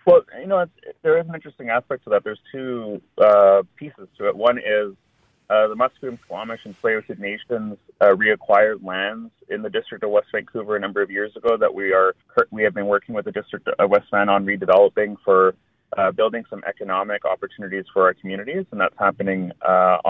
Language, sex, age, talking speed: English, male, 30-49, 200 wpm